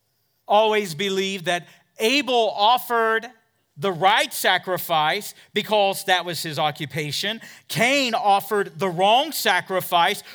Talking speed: 105 wpm